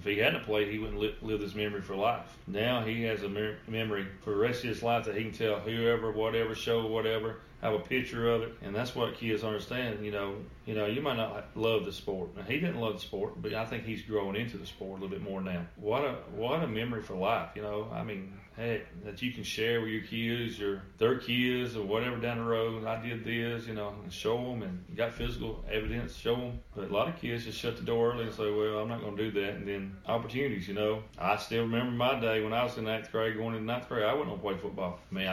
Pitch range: 105-115 Hz